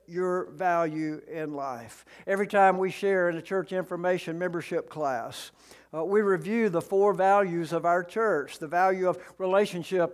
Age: 60-79